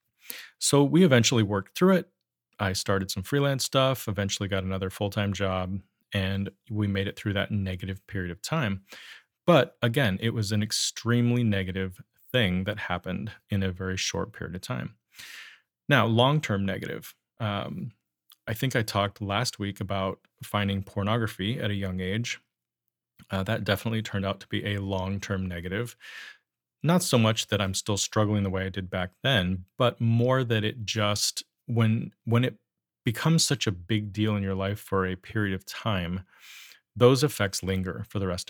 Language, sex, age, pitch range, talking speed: English, male, 30-49, 95-115 Hz, 170 wpm